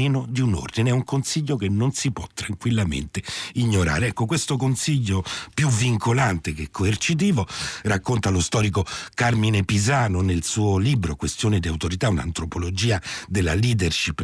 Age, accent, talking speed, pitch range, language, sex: 60-79, native, 140 wpm, 90-125 Hz, Italian, male